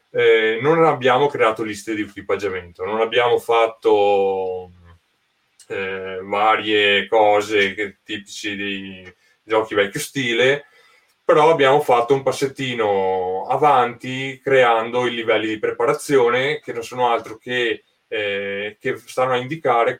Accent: native